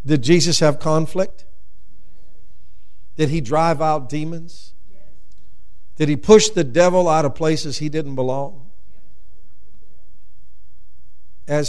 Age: 60-79